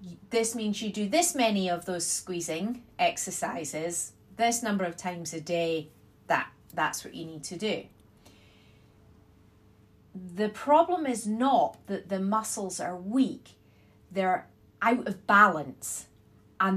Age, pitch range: 30-49, 175-245 Hz